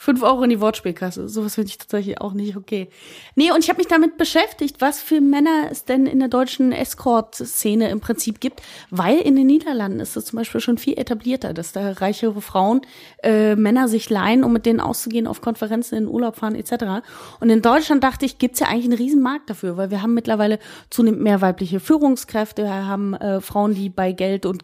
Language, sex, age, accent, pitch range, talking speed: German, female, 30-49, German, 210-260 Hz, 215 wpm